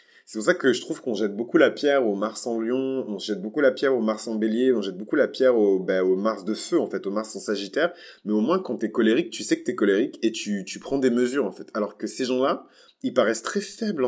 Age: 20-39